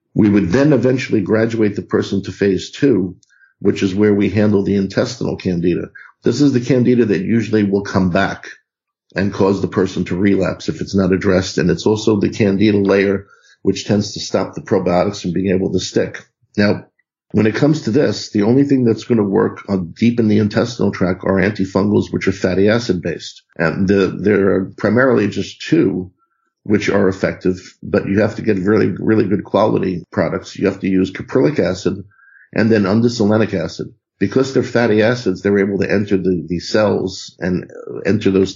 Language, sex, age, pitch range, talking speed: English, male, 50-69, 95-110 Hz, 190 wpm